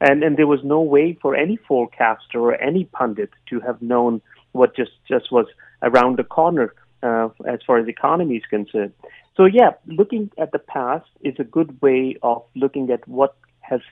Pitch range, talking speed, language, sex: 130-175 Hz, 190 wpm, English, male